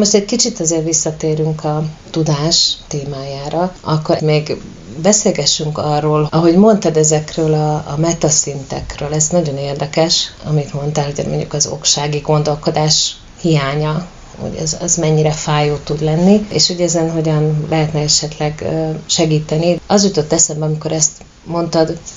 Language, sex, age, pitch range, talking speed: Hungarian, female, 30-49, 150-170 Hz, 130 wpm